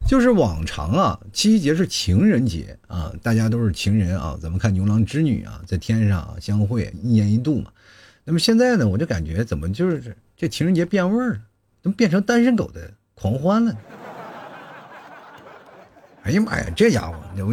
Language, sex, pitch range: Chinese, male, 100-150 Hz